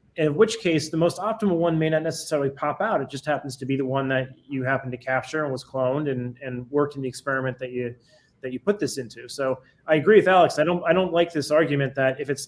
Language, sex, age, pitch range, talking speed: English, male, 30-49, 130-160 Hz, 265 wpm